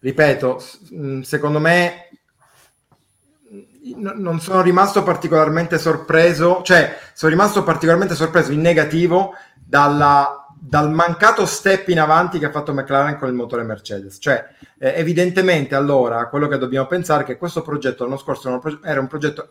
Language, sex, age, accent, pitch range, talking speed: Italian, male, 30-49, native, 130-165 Hz, 130 wpm